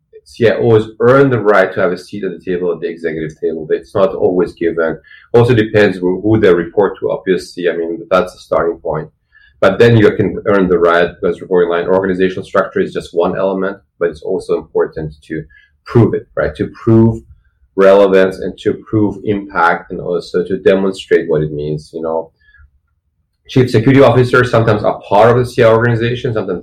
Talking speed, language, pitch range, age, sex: 185 wpm, English, 85-125 Hz, 30-49, male